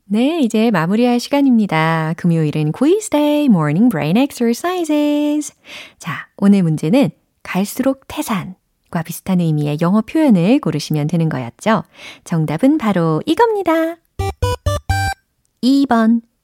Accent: native